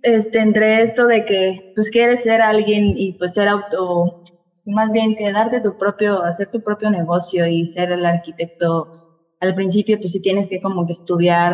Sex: female